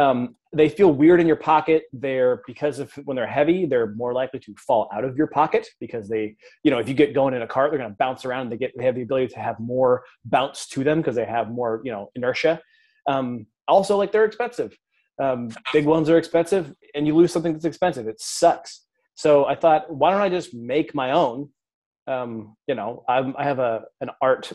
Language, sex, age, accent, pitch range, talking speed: English, male, 30-49, American, 120-160 Hz, 230 wpm